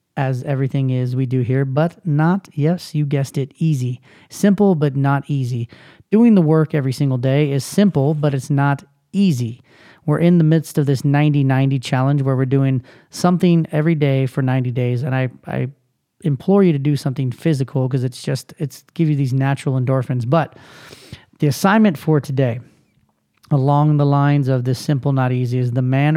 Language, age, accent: English, 30-49, American